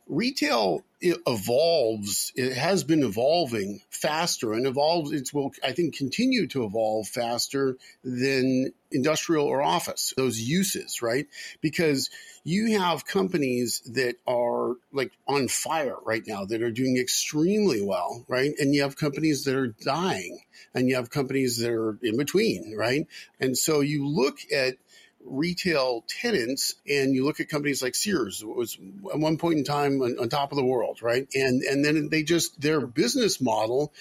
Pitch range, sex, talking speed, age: 125-160 Hz, male, 160 wpm, 50-69